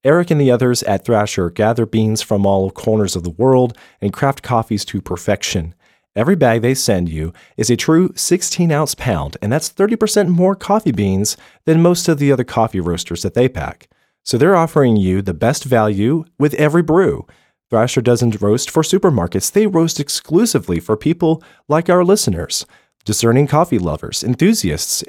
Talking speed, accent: 170 wpm, American